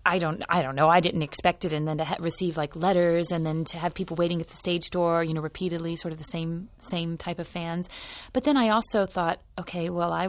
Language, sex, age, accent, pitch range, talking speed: English, female, 30-49, American, 160-180 Hz, 260 wpm